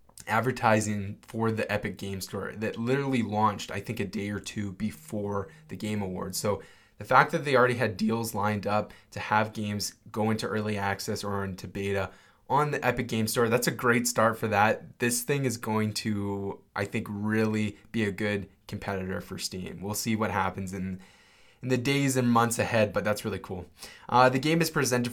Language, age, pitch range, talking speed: English, 20-39, 100-120 Hz, 200 wpm